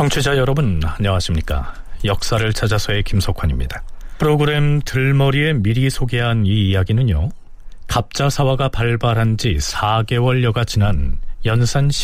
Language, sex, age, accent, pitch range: Korean, male, 40-59, native, 100-145 Hz